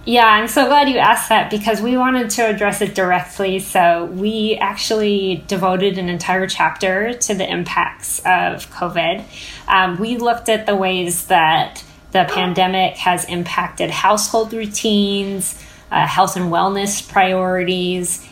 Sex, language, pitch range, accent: female, English, 180-215 Hz, American